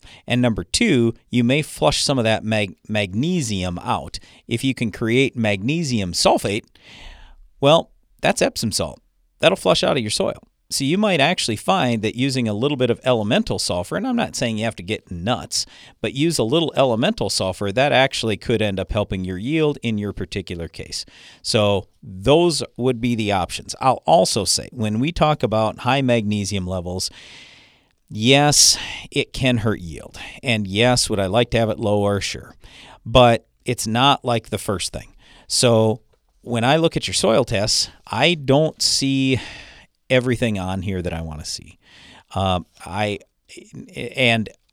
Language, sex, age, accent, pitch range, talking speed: English, male, 50-69, American, 100-125 Hz, 170 wpm